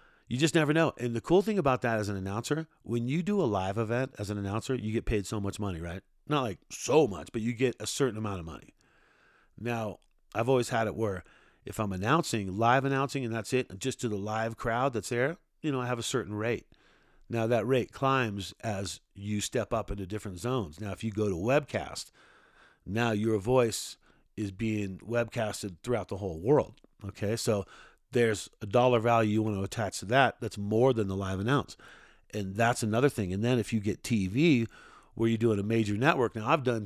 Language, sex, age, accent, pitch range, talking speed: English, male, 50-69, American, 105-125 Hz, 215 wpm